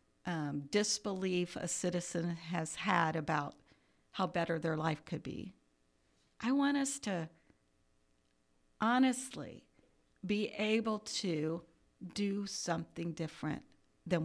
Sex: female